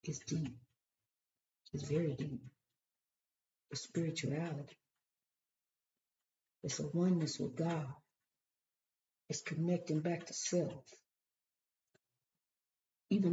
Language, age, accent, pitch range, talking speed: English, 60-79, American, 145-195 Hz, 80 wpm